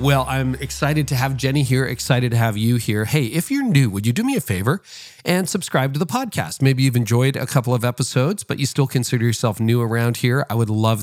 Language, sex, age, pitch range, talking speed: English, male, 40-59, 110-135 Hz, 245 wpm